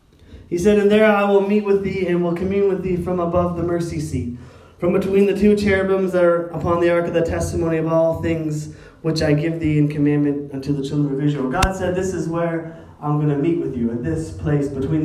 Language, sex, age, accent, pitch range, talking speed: English, male, 20-39, American, 150-175 Hz, 245 wpm